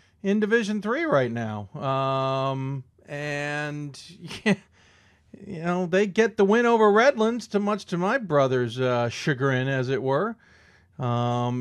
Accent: American